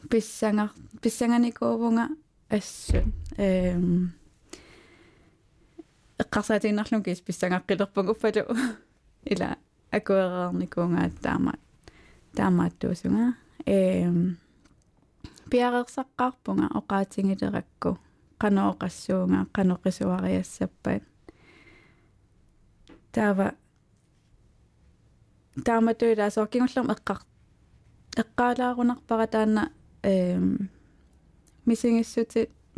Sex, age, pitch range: female, 20-39, 185-225 Hz